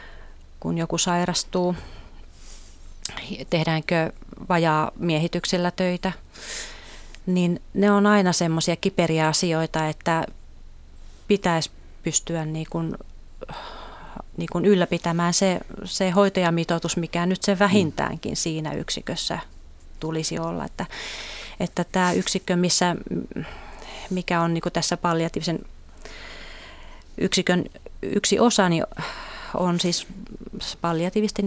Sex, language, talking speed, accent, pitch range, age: female, Finnish, 95 wpm, native, 160-185 Hz, 30-49